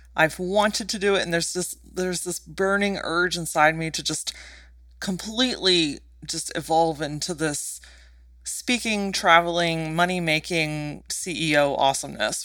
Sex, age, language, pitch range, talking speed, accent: female, 30-49, English, 150-195 Hz, 120 wpm, American